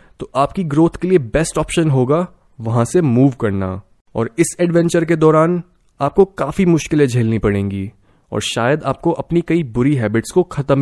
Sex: male